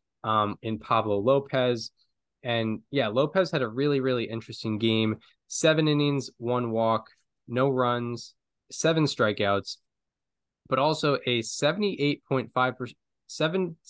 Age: 10-29